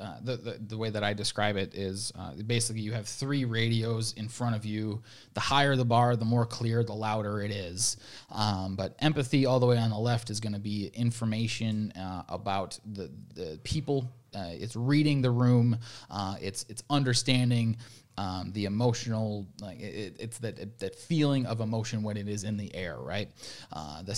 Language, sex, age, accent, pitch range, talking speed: English, male, 20-39, American, 105-125 Hz, 200 wpm